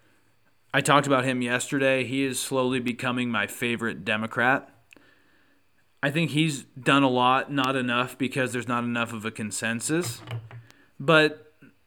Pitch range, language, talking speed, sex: 115-150 Hz, English, 140 wpm, male